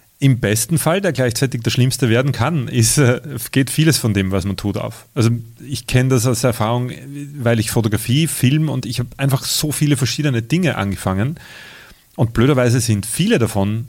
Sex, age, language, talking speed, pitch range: male, 30-49, German, 175 wpm, 105-130 Hz